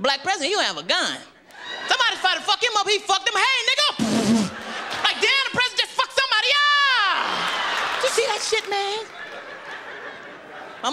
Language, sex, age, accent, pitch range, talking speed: English, male, 30-49, American, 270-400 Hz, 180 wpm